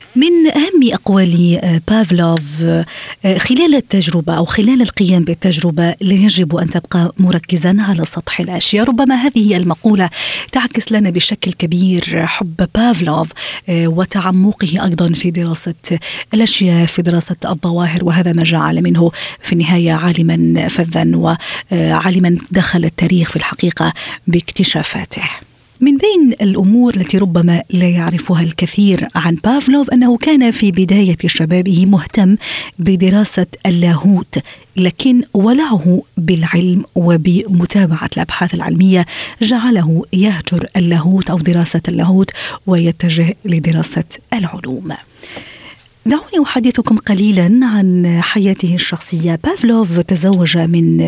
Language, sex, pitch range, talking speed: Arabic, female, 170-205 Hz, 105 wpm